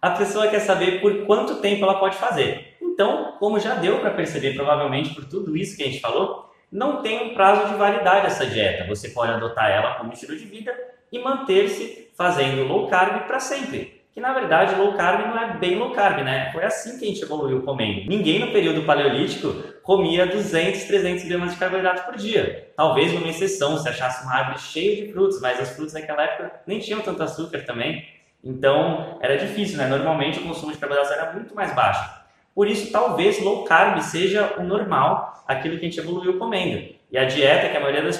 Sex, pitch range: male, 155-205 Hz